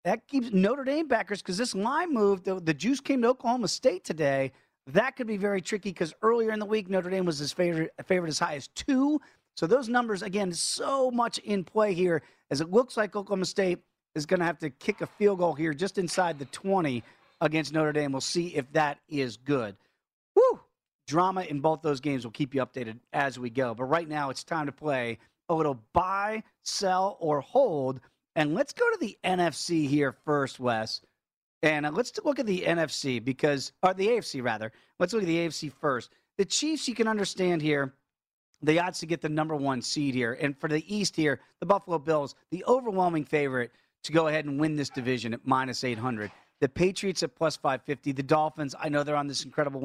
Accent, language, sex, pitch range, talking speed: American, English, male, 140-200 Hz, 210 wpm